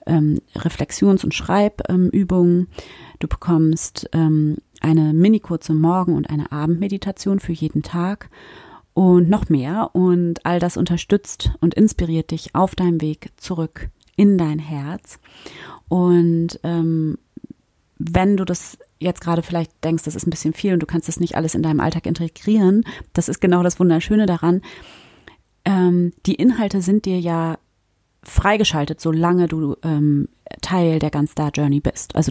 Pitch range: 150-180 Hz